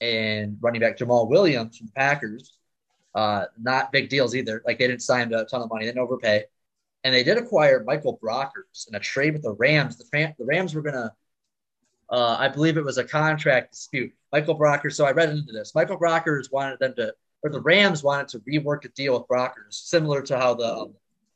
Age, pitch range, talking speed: 20-39, 115-150 Hz, 215 wpm